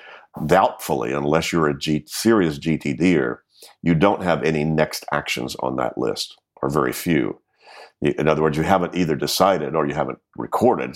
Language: English